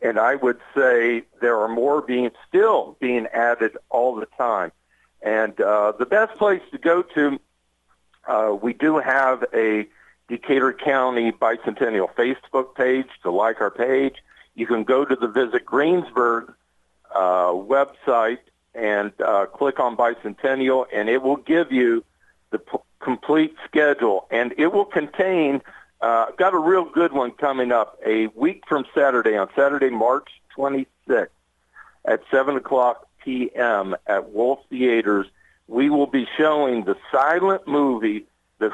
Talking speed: 145 wpm